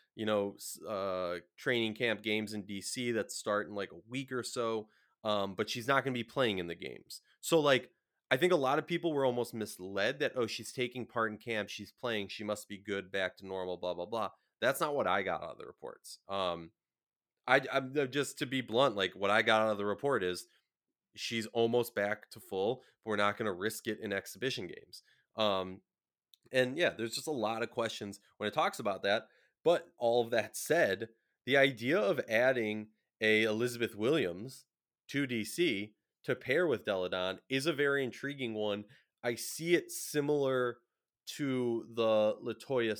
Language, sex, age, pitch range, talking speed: English, male, 30-49, 105-125 Hz, 195 wpm